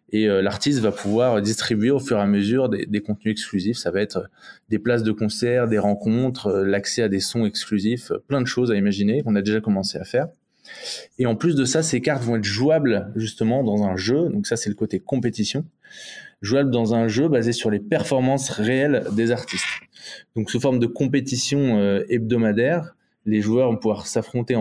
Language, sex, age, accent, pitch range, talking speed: French, male, 20-39, French, 105-125 Hz, 195 wpm